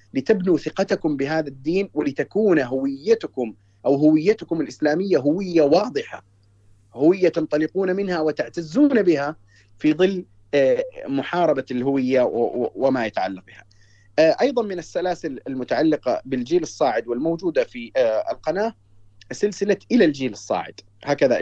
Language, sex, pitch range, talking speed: Arabic, male, 115-185 Hz, 105 wpm